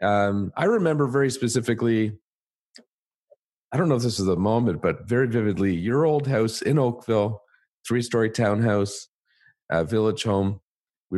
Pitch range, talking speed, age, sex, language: 95-125 Hz, 145 wpm, 40-59, male, English